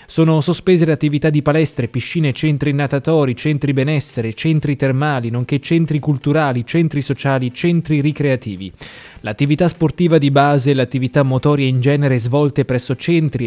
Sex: male